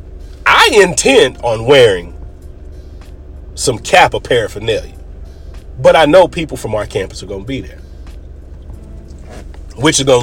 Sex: male